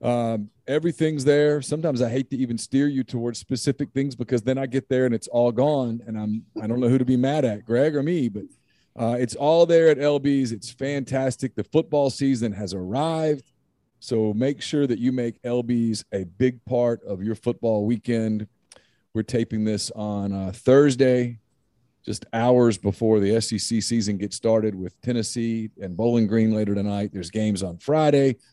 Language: English